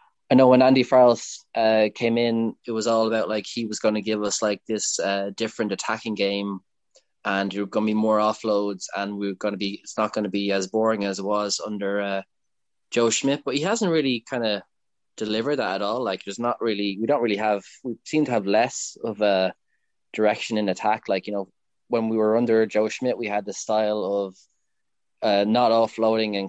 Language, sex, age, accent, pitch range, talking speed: English, male, 20-39, Irish, 100-115 Hz, 220 wpm